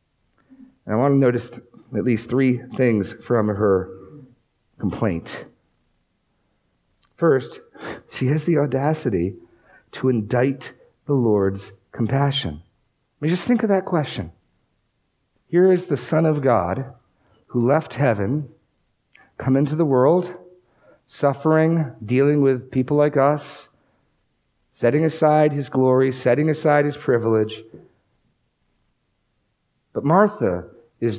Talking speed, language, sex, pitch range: 110 wpm, English, male, 115-160 Hz